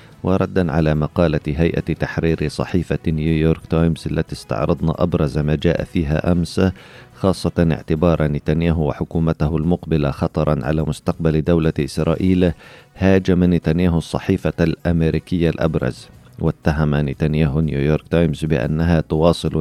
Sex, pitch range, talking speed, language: male, 75-85 Hz, 110 wpm, Arabic